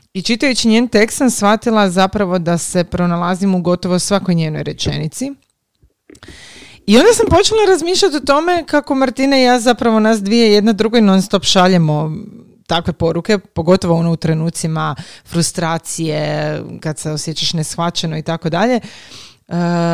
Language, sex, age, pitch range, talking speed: Croatian, female, 30-49, 160-200 Hz, 140 wpm